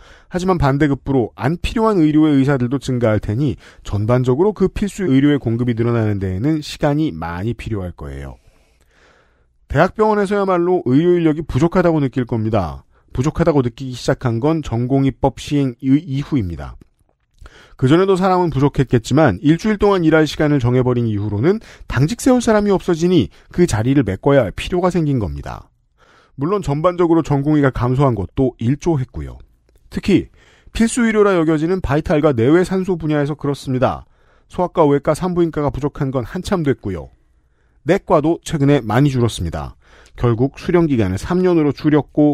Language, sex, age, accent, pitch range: Korean, male, 40-59, native, 115-170 Hz